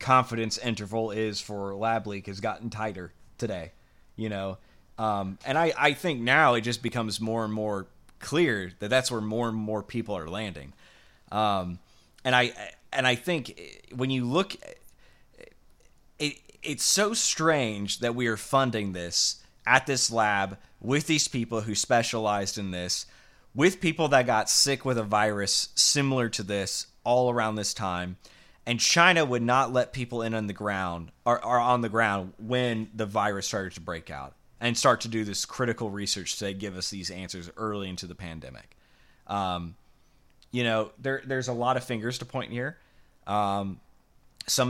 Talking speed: 175 wpm